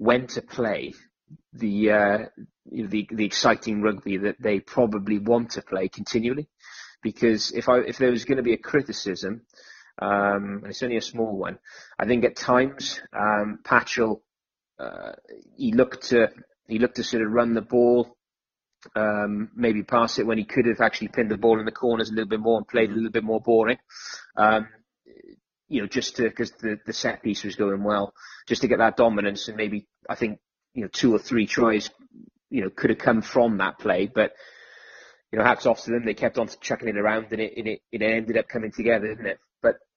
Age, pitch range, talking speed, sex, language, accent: 20-39, 105-120 Hz, 210 wpm, male, English, British